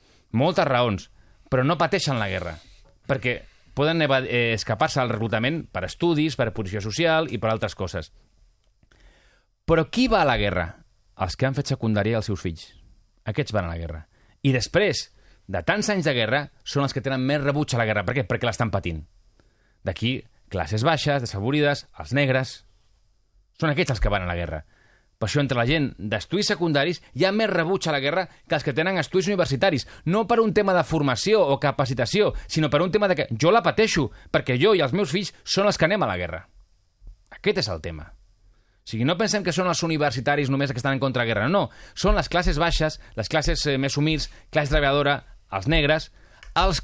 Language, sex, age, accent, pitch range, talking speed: Spanish, male, 30-49, Spanish, 105-165 Hz, 210 wpm